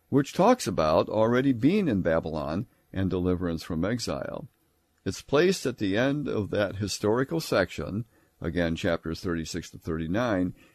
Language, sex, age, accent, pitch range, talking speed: English, male, 60-79, American, 85-120 Hz, 140 wpm